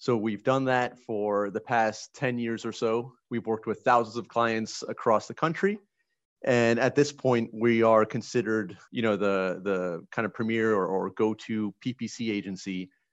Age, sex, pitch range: 30-49, male, 100-120 Hz